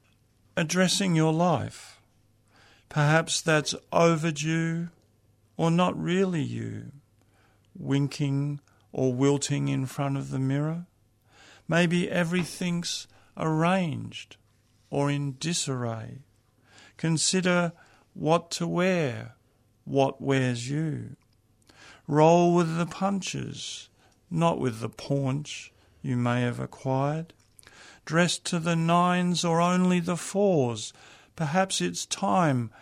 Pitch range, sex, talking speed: 115-165 Hz, male, 100 wpm